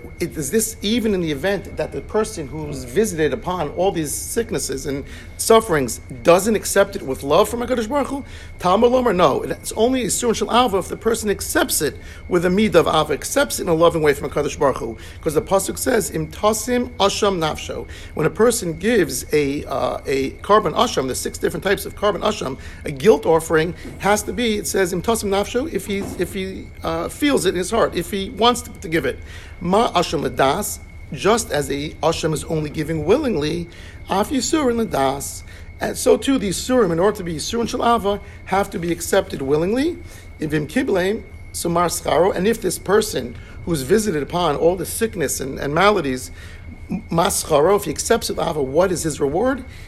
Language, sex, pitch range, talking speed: English, male, 155-225 Hz, 190 wpm